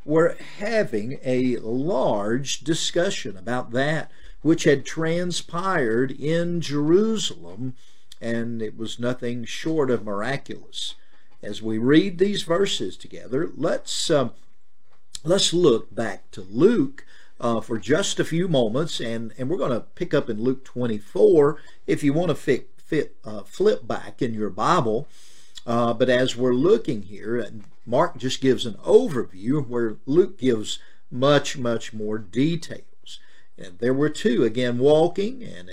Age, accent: 50-69, American